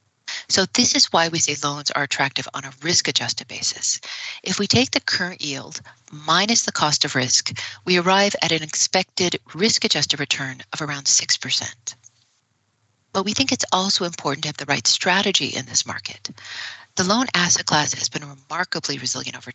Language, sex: English, female